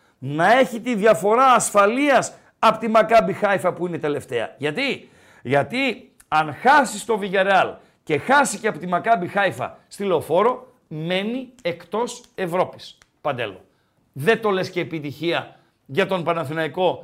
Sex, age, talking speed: male, 50-69, 135 wpm